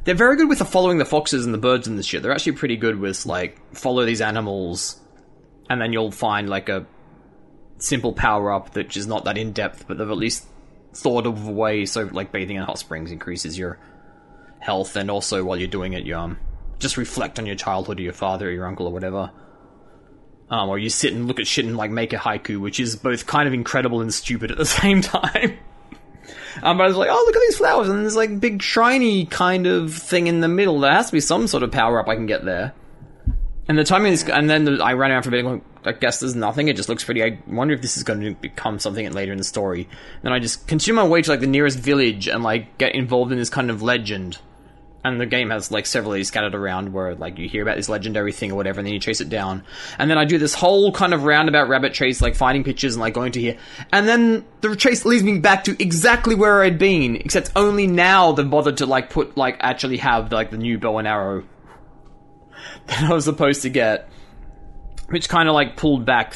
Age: 20-39